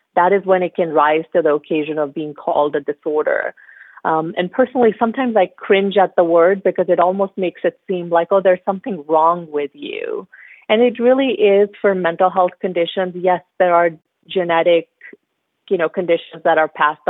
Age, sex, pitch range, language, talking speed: 30-49, female, 155-185 Hz, English, 190 wpm